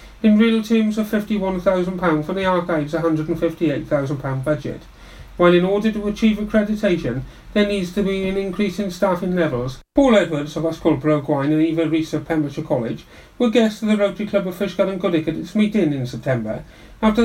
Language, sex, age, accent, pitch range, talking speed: English, male, 40-59, British, 160-215 Hz, 190 wpm